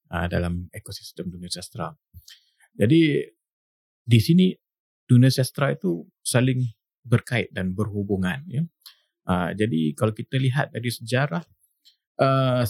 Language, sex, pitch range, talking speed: English, male, 95-125 Hz, 115 wpm